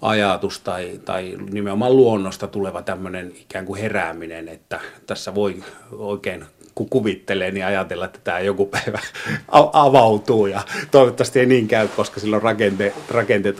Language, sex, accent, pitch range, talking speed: Finnish, male, native, 95-115 Hz, 140 wpm